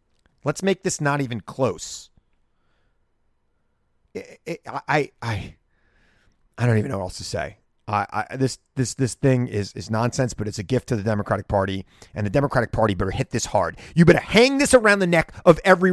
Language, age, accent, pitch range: English, 30-49, American, 110-160 Hz